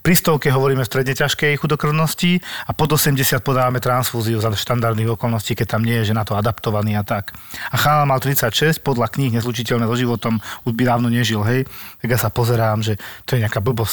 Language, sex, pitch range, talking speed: Slovak, male, 120-150 Hz, 205 wpm